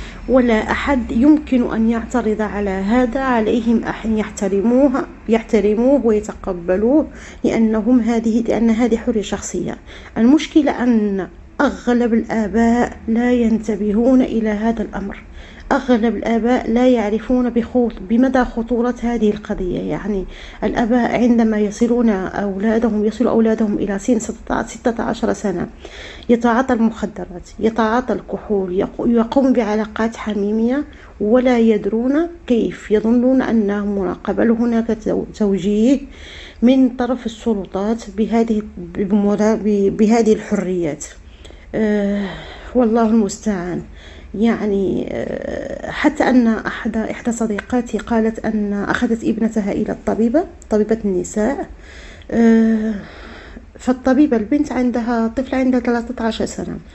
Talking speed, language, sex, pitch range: 95 wpm, Arabic, female, 210-245 Hz